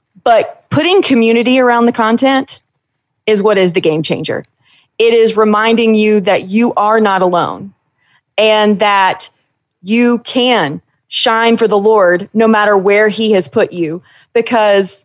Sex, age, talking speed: female, 30-49, 150 wpm